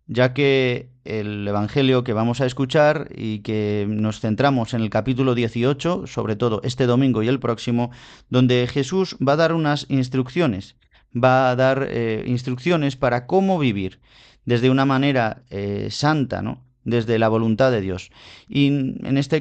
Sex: male